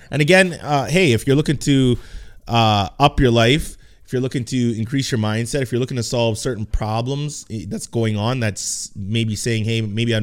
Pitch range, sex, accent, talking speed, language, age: 110-140 Hz, male, American, 205 wpm, English, 20-39